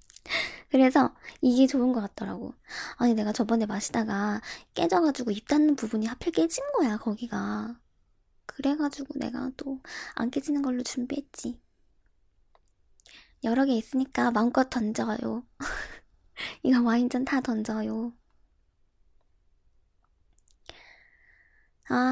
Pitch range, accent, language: 210-275 Hz, native, Korean